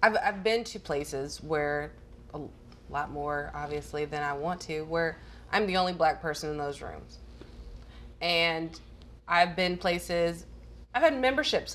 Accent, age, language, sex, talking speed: American, 30-49, English, female, 150 wpm